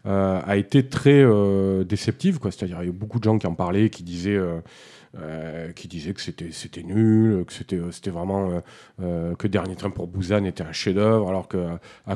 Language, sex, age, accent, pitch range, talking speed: French, male, 40-59, French, 100-125 Hz, 210 wpm